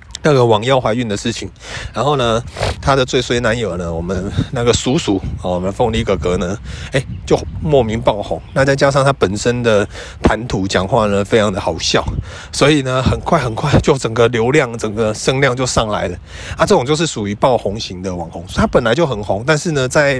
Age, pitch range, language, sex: 30-49, 105-150 Hz, Chinese, male